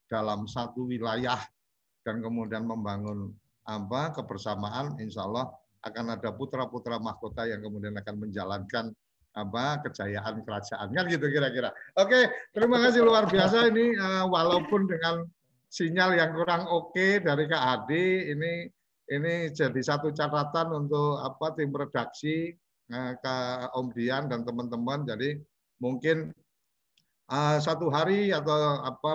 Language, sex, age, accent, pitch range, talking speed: Indonesian, male, 50-69, native, 120-160 Hz, 125 wpm